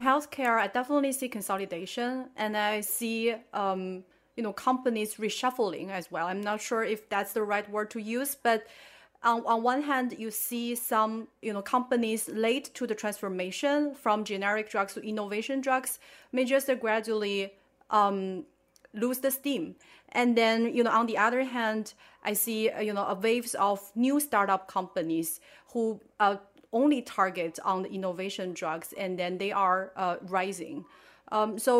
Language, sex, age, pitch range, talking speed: English, female, 30-49, 200-245 Hz, 170 wpm